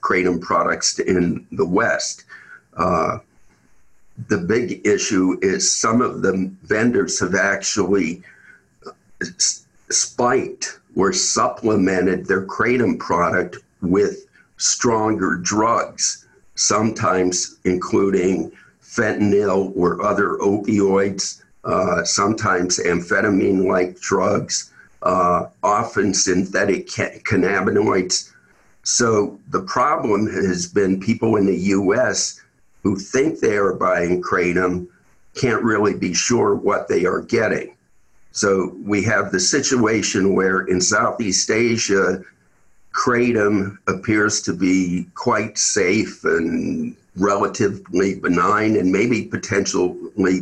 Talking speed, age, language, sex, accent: 100 wpm, 60-79, English, male, American